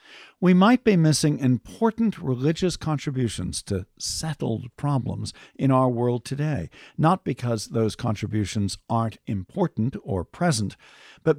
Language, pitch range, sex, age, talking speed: English, 105-155 Hz, male, 50-69, 120 wpm